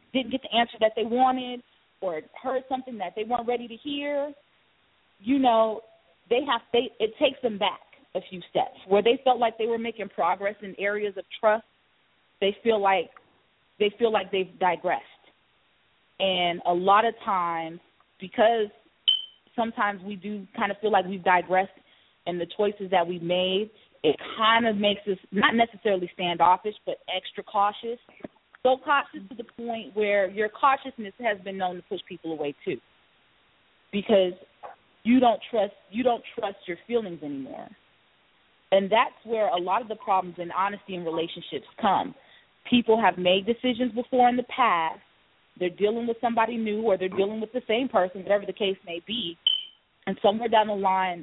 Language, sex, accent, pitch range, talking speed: English, female, American, 185-235 Hz, 175 wpm